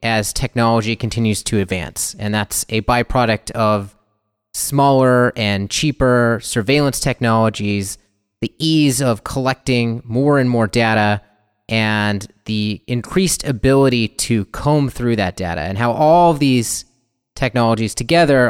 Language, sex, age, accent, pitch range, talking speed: English, male, 30-49, American, 105-130 Hz, 125 wpm